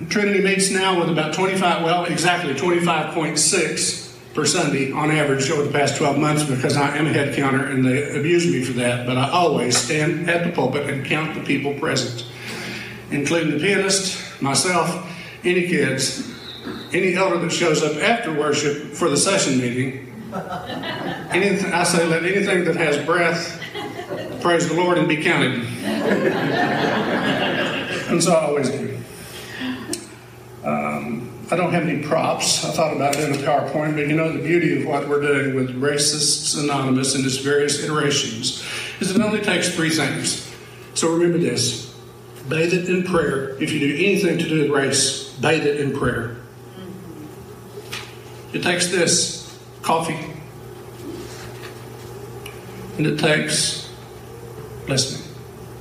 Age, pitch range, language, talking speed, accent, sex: 50-69, 135-170 Hz, English, 150 wpm, American, male